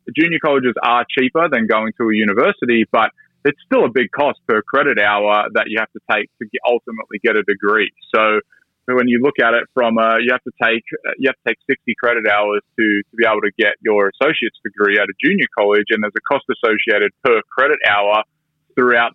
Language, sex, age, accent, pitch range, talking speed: English, male, 20-39, Australian, 110-125 Hz, 215 wpm